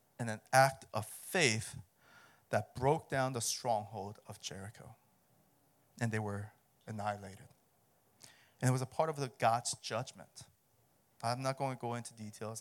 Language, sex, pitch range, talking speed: English, male, 110-135 Hz, 150 wpm